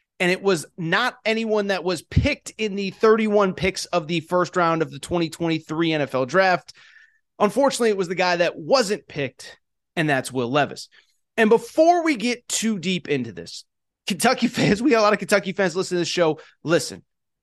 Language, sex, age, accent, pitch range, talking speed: English, male, 30-49, American, 180-235 Hz, 190 wpm